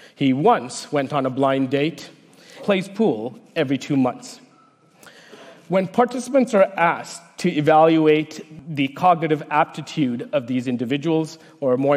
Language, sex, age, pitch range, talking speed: Spanish, male, 40-59, 140-185 Hz, 130 wpm